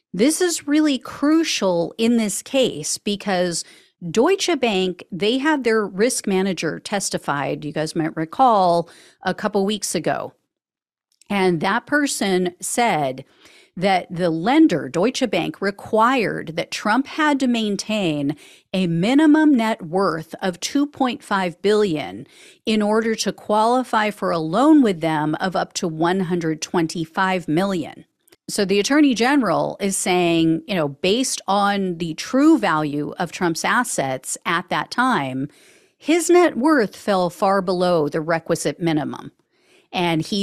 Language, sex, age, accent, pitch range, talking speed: English, female, 40-59, American, 165-240 Hz, 135 wpm